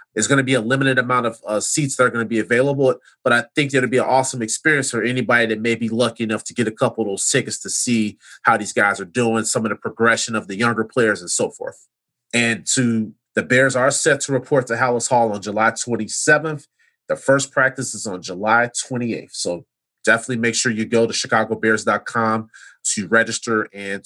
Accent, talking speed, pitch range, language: American, 215 wpm, 115-135 Hz, English